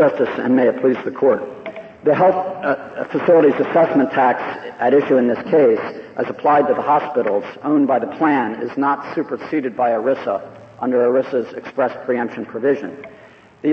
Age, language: 50-69, English